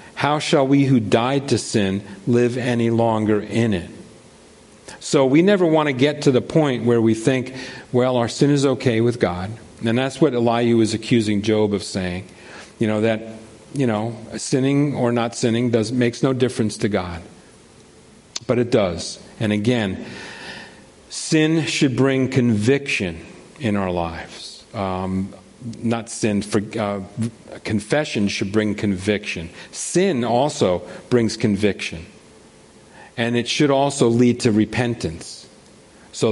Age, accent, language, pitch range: 50-69, American, English, 110-140 Hz